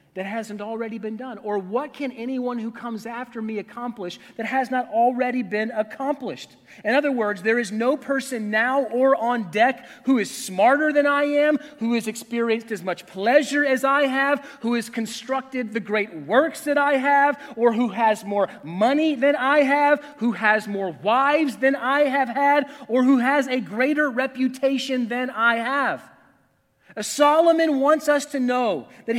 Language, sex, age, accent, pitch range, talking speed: English, male, 30-49, American, 235-305 Hz, 175 wpm